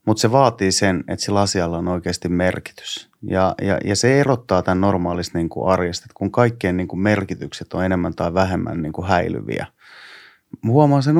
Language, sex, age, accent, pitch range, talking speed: Finnish, male, 30-49, native, 90-110 Hz, 155 wpm